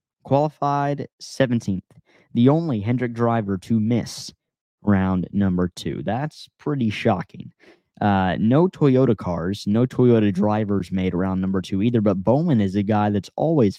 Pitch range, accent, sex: 105-135 Hz, American, male